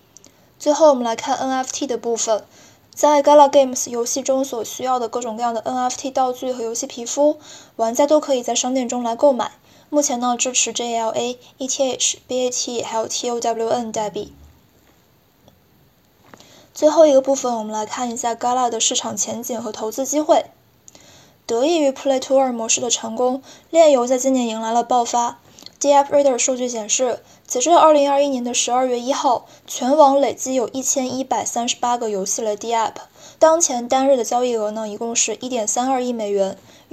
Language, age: Chinese, 10-29